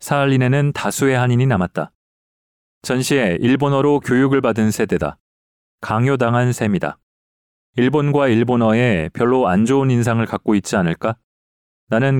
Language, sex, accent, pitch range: Korean, male, native, 90-130 Hz